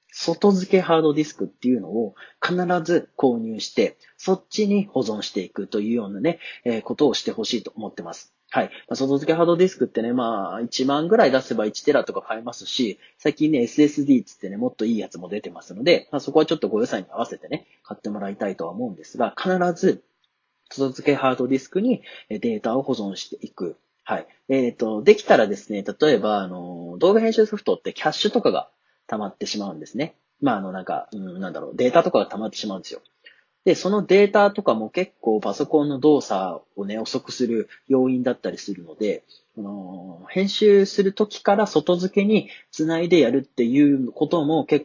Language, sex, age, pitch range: Japanese, male, 30-49, 120-195 Hz